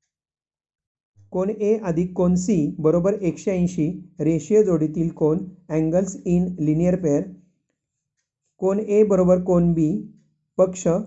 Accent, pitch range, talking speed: native, 160-195 Hz, 105 wpm